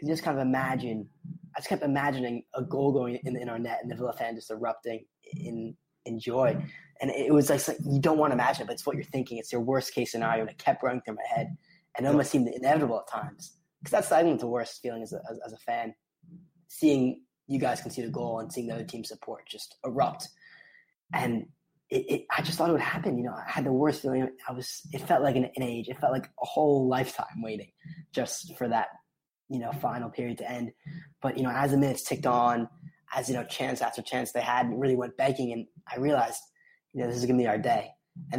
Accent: American